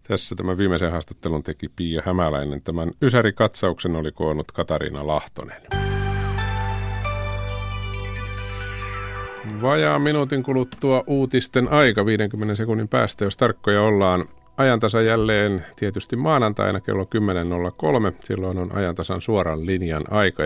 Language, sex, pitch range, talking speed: Finnish, male, 85-105 Hz, 105 wpm